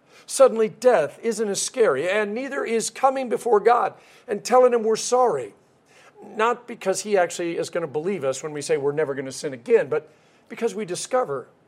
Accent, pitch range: American, 150-225 Hz